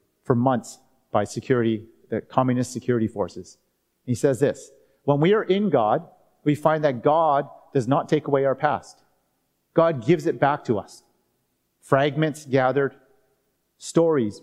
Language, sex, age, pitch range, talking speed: English, male, 40-59, 125-155 Hz, 145 wpm